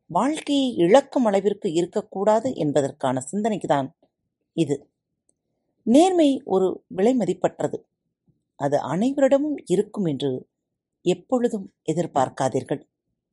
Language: Tamil